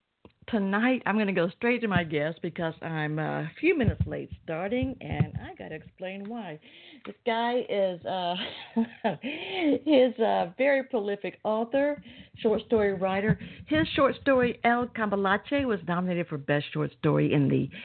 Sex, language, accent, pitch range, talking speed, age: female, English, American, 155-220 Hz, 155 wpm, 50-69